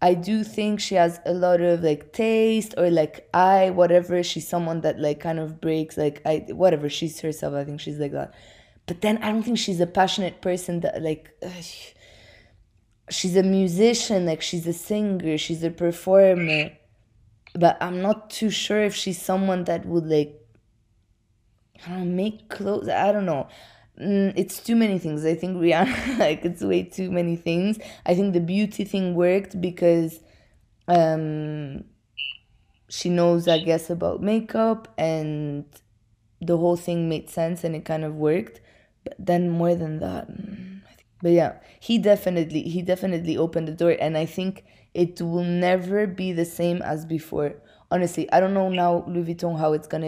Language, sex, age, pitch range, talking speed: English, female, 20-39, 155-185 Hz, 175 wpm